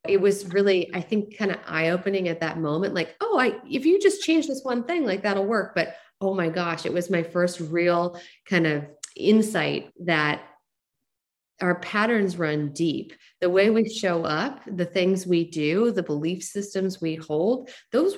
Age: 30-49